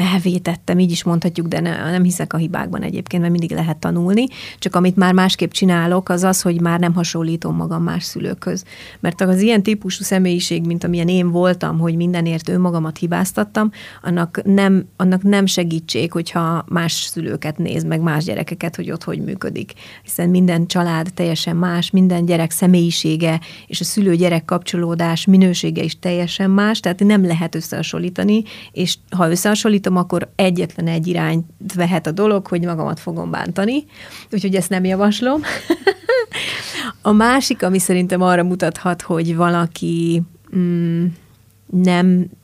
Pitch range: 170-190 Hz